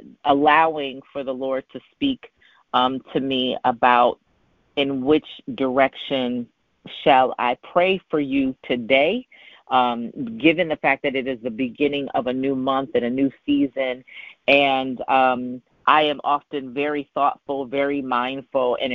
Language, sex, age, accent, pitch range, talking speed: English, female, 40-59, American, 125-145 Hz, 145 wpm